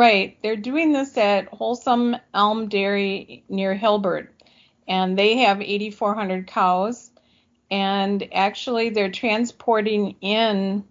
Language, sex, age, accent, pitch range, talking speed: English, female, 50-69, American, 185-215 Hz, 110 wpm